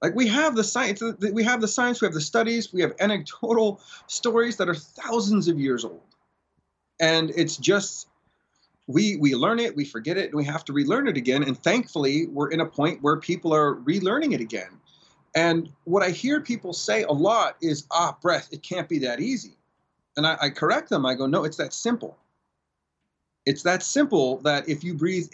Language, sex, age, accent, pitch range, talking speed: English, male, 30-49, American, 145-205 Hz, 205 wpm